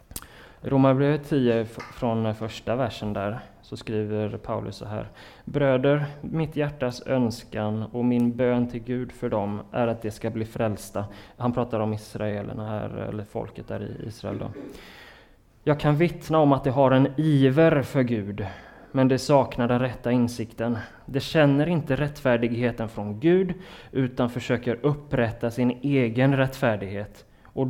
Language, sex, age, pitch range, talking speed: Swedish, male, 20-39, 115-150 Hz, 150 wpm